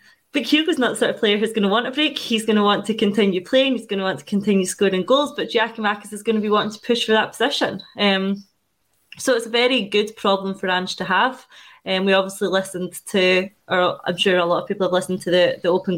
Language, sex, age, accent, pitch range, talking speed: English, female, 20-39, British, 190-220 Hz, 265 wpm